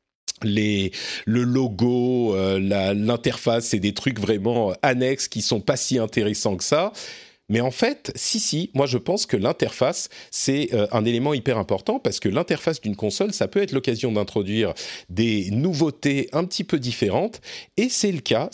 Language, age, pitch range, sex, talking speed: French, 40-59, 105-155 Hz, male, 170 wpm